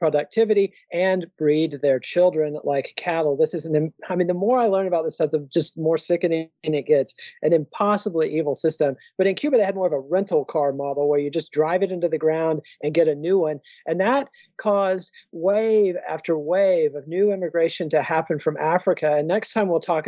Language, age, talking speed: English, 40-59, 215 wpm